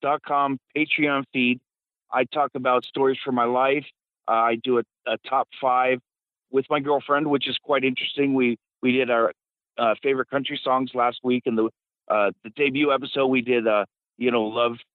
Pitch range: 120-140 Hz